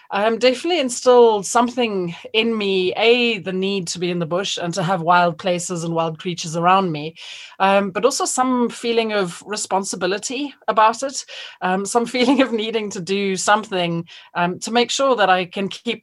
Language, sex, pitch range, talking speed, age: English, female, 180-225 Hz, 185 wpm, 30-49